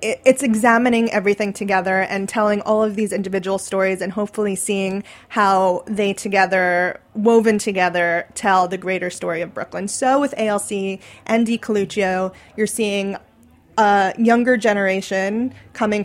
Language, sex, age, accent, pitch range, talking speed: English, female, 20-39, American, 190-215 Hz, 135 wpm